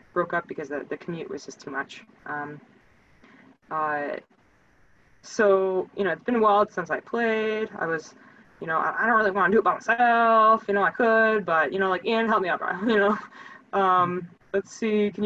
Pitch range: 165-210 Hz